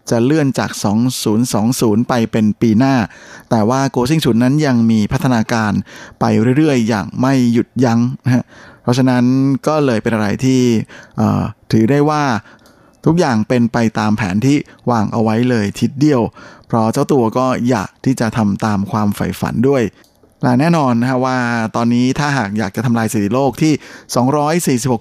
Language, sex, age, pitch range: Thai, male, 20-39, 110-135 Hz